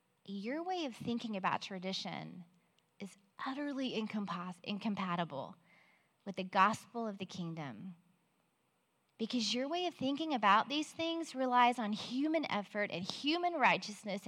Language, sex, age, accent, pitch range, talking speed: English, female, 20-39, American, 190-265 Hz, 125 wpm